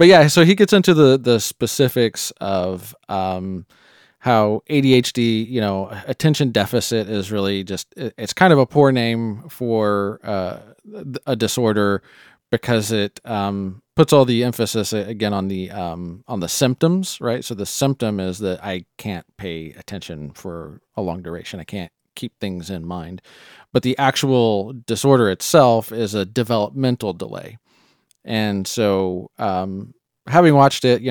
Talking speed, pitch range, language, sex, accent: 155 wpm, 100-130 Hz, English, male, American